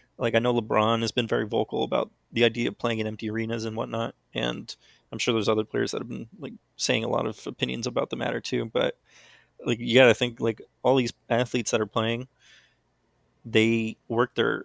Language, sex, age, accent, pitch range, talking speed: English, male, 20-39, American, 110-120 Hz, 215 wpm